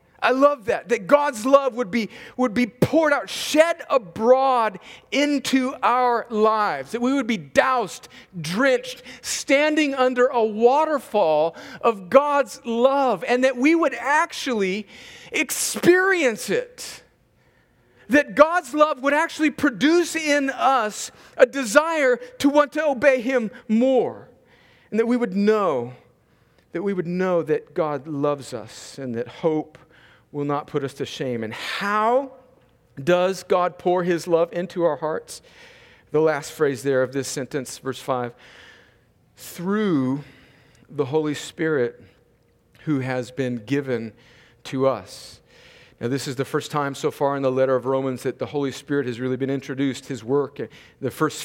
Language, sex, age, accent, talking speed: English, male, 40-59, American, 150 wpm